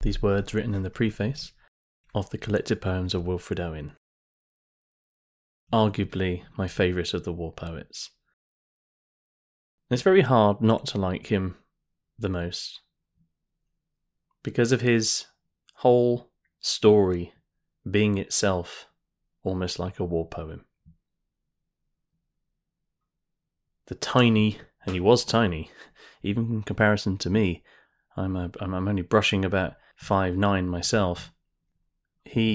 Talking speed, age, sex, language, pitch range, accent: 115 wpm, 20-39, male, English, 90-110 Hz, British